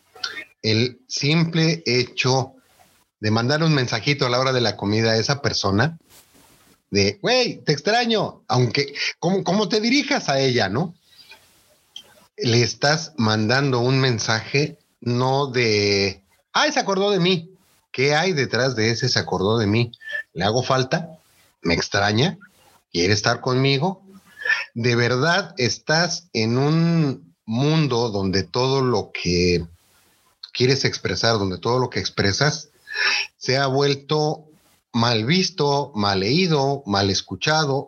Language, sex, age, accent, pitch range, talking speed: Spanish, male, 30-49, Mexican, 110-155 Hz, 135 wpm